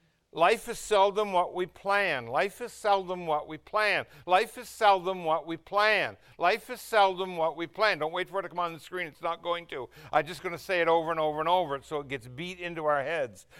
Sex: male